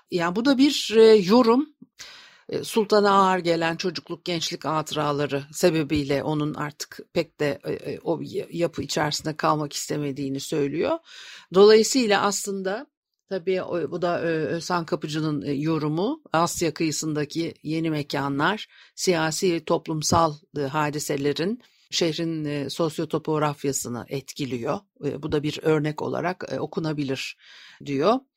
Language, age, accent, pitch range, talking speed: Turkish, 50-69, native, 155-210 Hz, 100 wpm